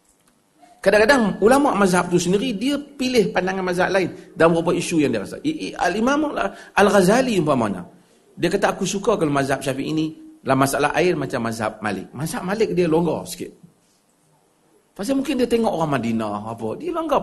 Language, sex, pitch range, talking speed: Malay, male, 160-230 Hz, 165 wpm